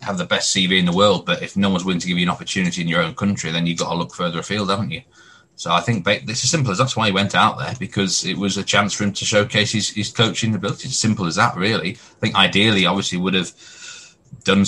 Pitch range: 90-120 Hz